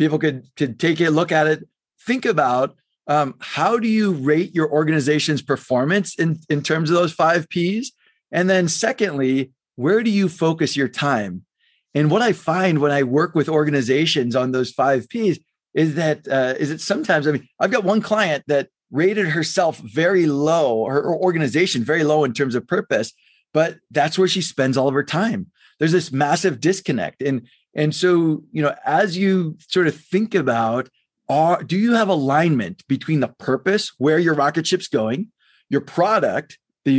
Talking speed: 180 wpm